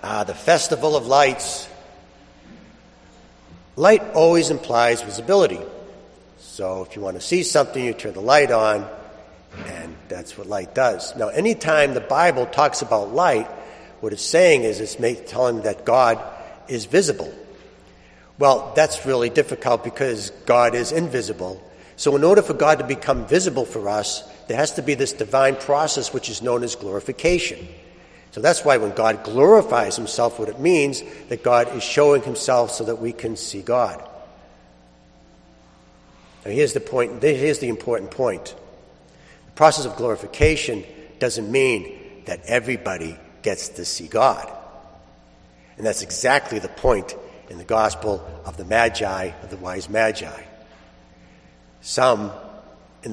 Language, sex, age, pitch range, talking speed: English, male, 60-79, 85-140 Hz, 150 wpm